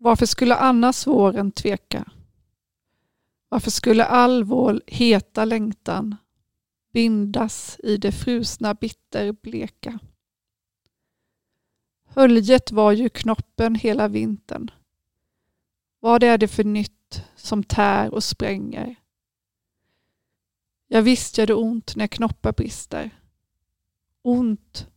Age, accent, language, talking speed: 40-59, Swedish, English, 95 wpm